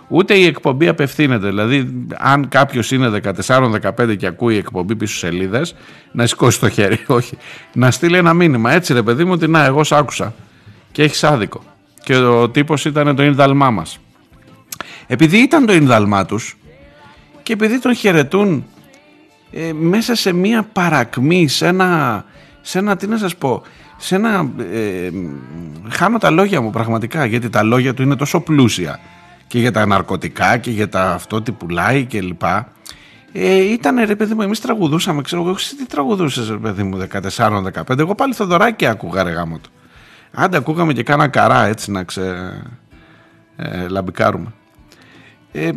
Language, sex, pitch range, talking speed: Greek, male, 110-170 Hz, 155 wpm